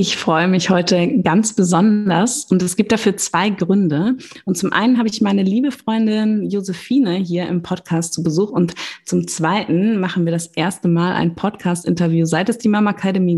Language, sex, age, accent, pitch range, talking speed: German, female, 20-39, German, 180-220 Hz, 185 wpm